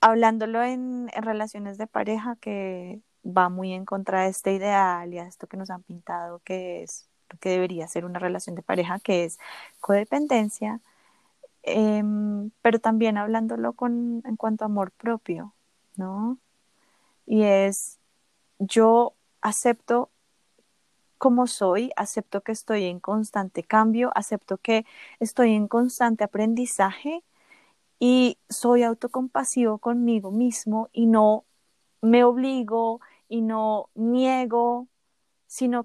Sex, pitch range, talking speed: female, 205-245 Hz, 125 wpm